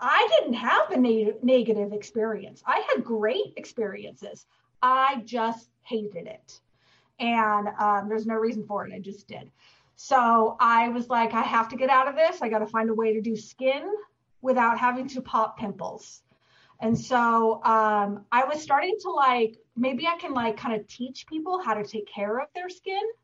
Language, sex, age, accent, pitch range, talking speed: English, female, 30-49, American, 225-270 Hz, 185 wpm